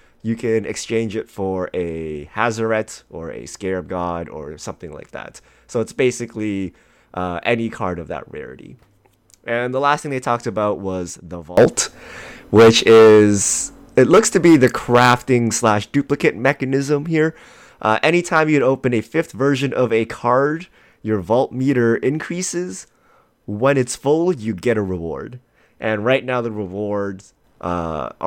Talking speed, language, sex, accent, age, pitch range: 155 wpm, English, male, American, 30-49, 100-125 Hz